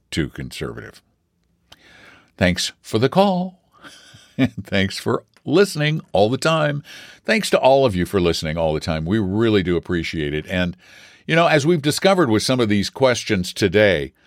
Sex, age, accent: male, 60-79, American